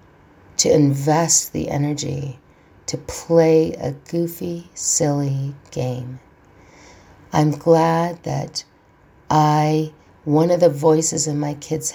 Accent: American